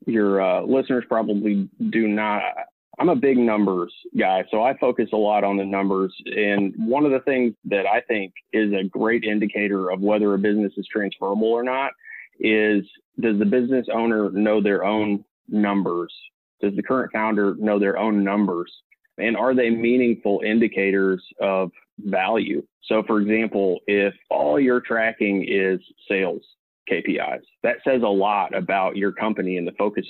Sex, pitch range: male, 100-115 Hz